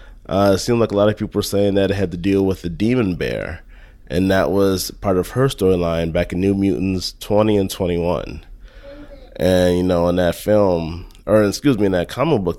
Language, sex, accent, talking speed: English, male, American, 220 wpm